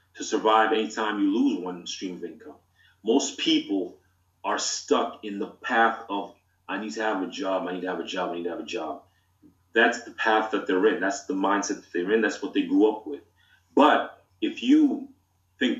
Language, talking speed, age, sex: English, 215 wpm, 30-49, male